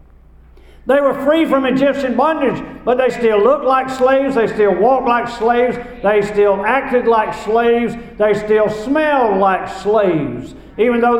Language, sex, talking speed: English, male, 155 wpm